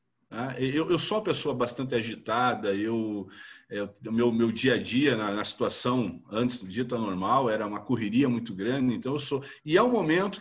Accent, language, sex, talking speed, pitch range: Brazilian, Portuguese, male, 195 wpm, 120-190 Hz